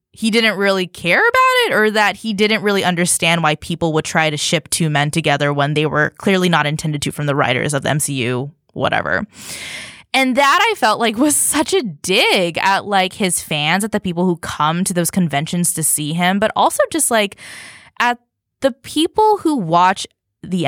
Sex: female